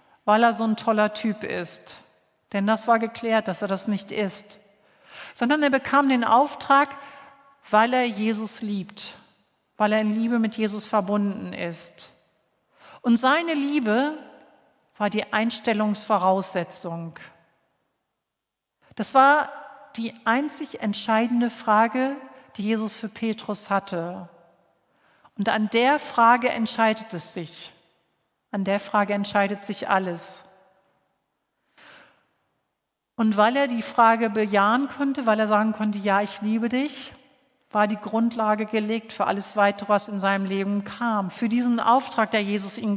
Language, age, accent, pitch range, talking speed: German, 50-69, German, 200-240 Hz, 135 wpm